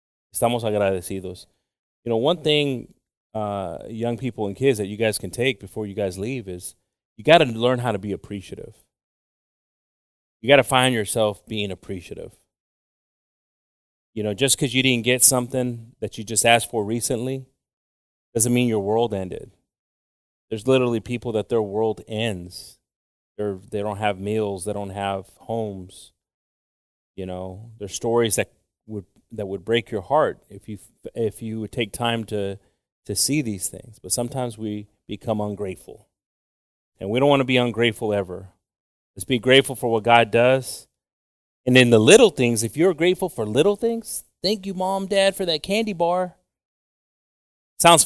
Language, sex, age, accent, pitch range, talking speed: English, male, 30-49, American, 100-130 Hz, 165 wpm